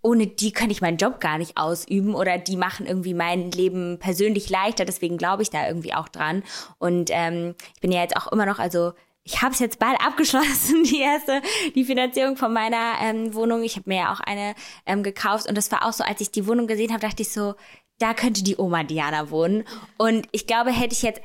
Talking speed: 230 wpm